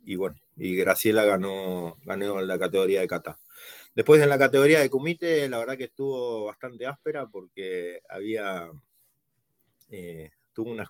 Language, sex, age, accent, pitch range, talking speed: Spanish, male, 30-49, Argentinian, 105-145 Hz, 150 wpm